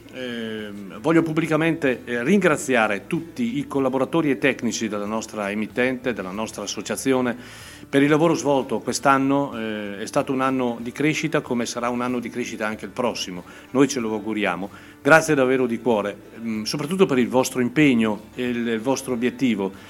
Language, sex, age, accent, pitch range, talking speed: Italian, male, 40-59, native, 110-140 Hz, 160 wpm